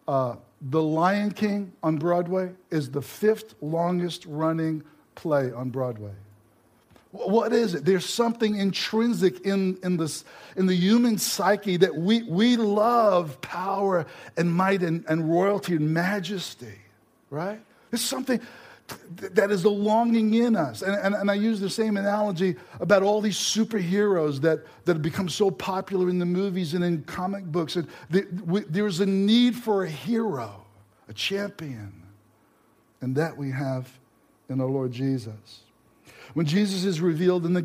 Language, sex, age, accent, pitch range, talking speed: English, male, 50-69, American, 160-215 Hz, 160 wpm